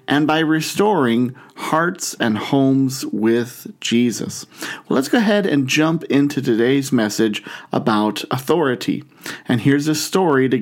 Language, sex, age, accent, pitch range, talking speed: English, male, 40-59, American, 130-165 Hz, 135 wpm